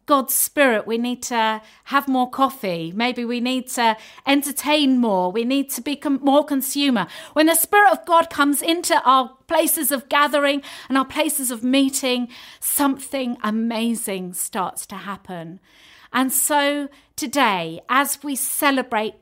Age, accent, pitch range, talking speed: 50-69, British, 225-285 Hz, 145 wpm